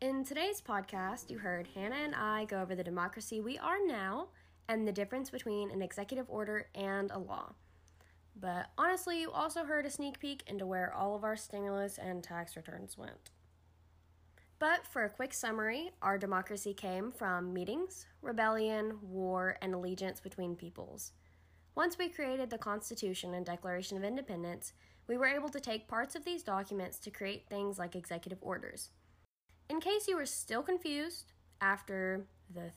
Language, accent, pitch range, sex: English, American, 185-250 Hz, female